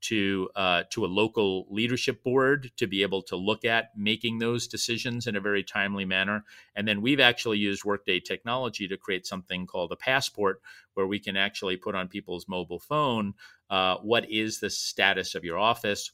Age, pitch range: 40-59, 90-110 Hz